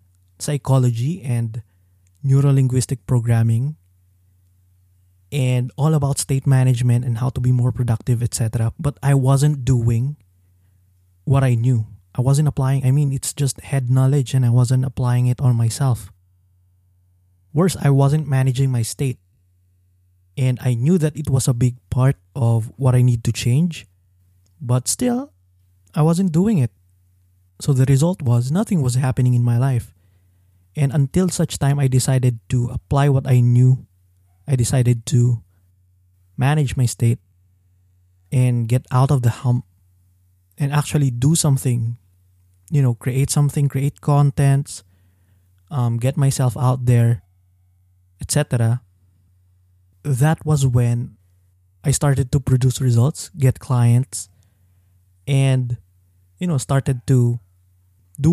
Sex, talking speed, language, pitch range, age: male, 135 wpm, English, 90-135 Hz, 20-39